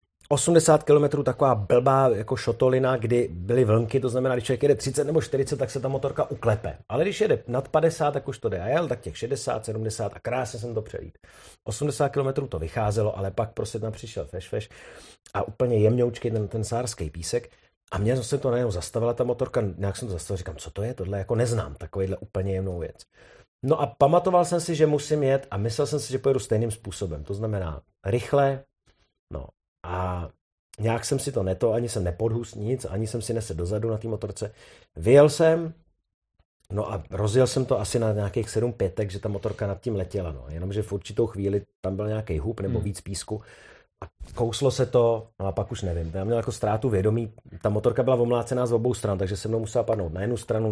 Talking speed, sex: 210 wpm, male